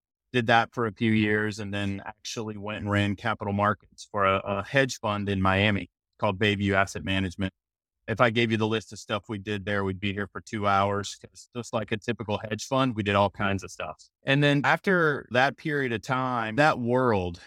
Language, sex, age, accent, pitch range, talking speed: English, male, 30-49, American, 100-120 Hz, 215 wpm